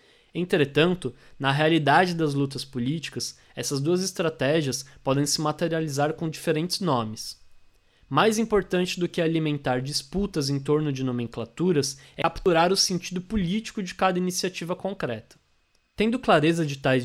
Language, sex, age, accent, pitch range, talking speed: Portuguese, male, 20-39, Brazilian, 135-180 Hz, 135 wpm